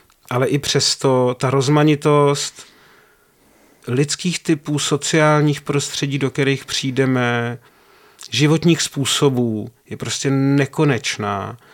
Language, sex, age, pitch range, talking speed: Czech, male, 40-59, 130-145 Hz, 85 wpm